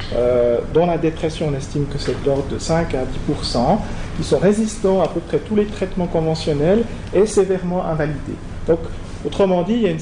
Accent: French